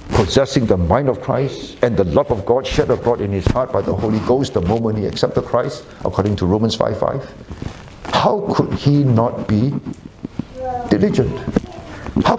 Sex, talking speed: male, 170 wpm